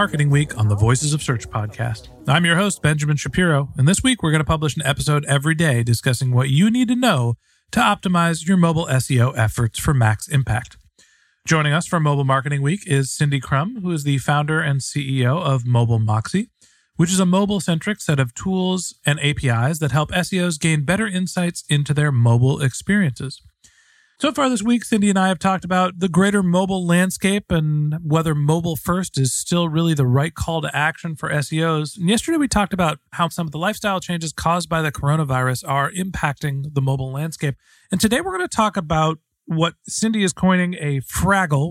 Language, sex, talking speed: English, male, 195 wpm